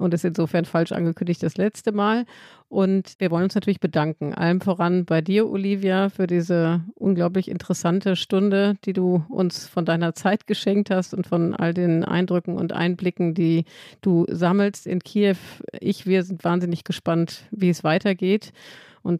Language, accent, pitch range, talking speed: German, German, 160-185 Hz, 165 wpm